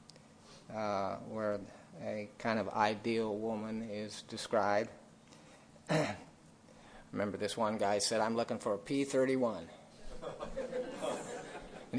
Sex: male